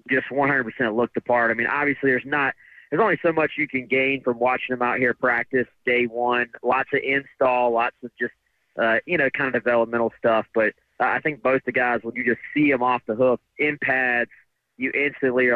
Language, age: English, 30-49